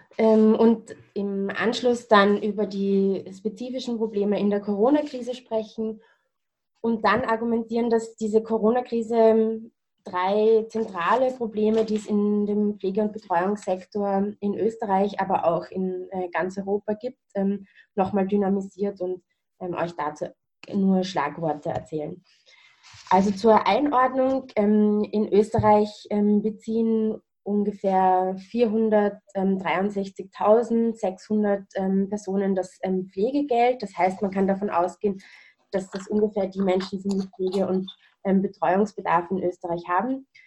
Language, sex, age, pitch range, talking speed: German, female, 20-39, 190-220 Hz, 115 wpm